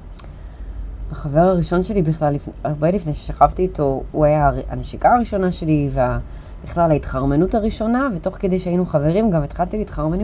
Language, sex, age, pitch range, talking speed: Hebrew, female, 20-39, 140-200 Hz, 135 wpm